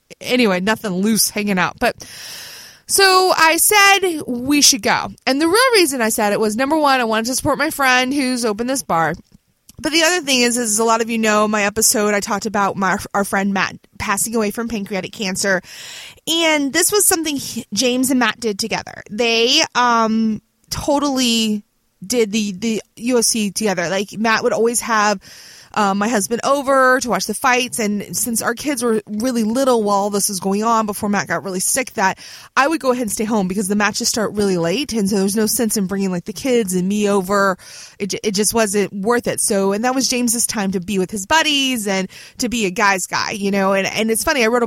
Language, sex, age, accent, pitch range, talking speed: English, female, 20-39, American, 200-250 Hz, 220 wpm